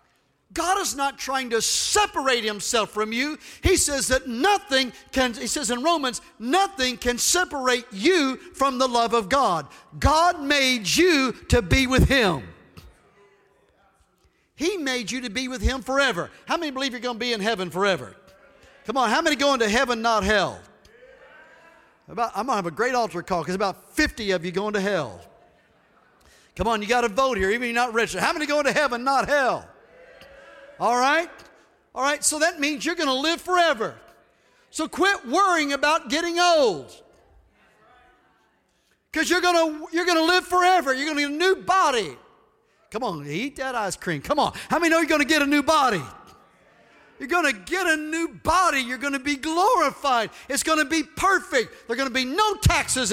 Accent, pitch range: American, 245-330 Hz